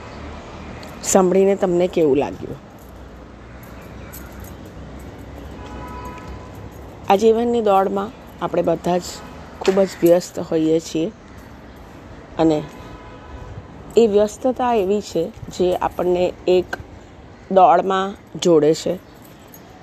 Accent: native